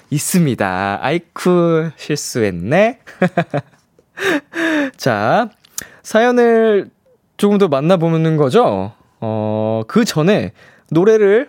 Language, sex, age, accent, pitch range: Korean, male, 20-39, native, 95-160 Hz